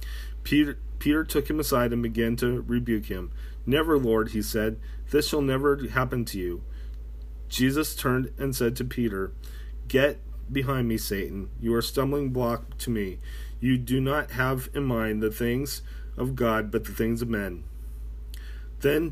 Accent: American